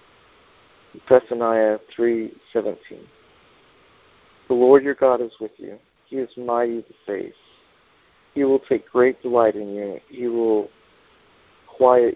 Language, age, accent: English, 50-69, American